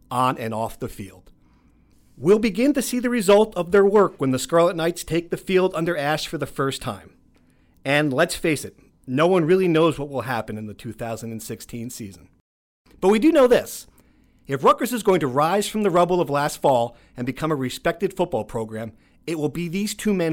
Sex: male